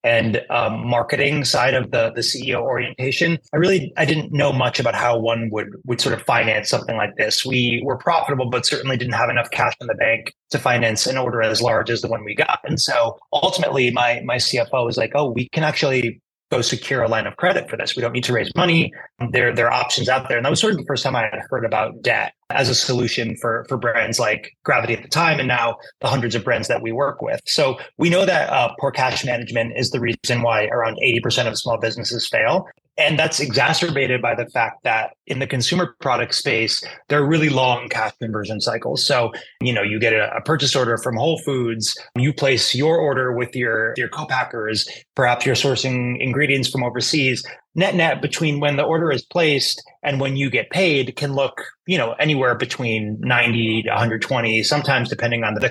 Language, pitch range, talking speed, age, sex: English, 120-145 Hz, 220 wpm, 30-49, male